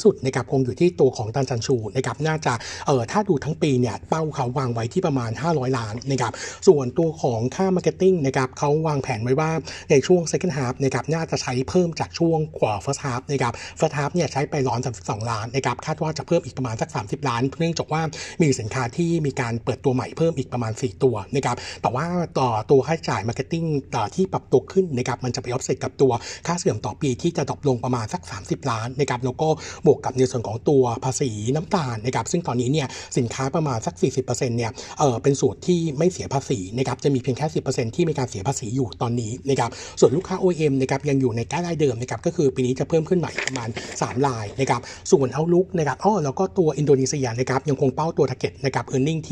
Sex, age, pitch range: male, 60-79, 125-155 Hz